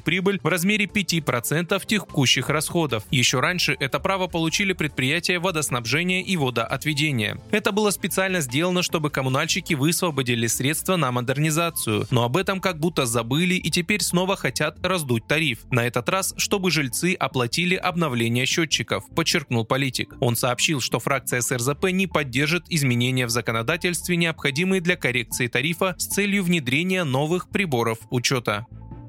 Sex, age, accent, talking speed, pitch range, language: male, 20-39, native, 140 wpm, 125-180 Hz, Russian